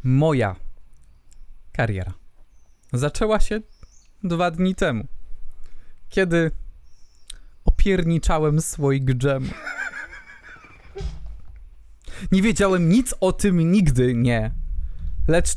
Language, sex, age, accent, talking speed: Polish, male, 20-39, native, 75 wpm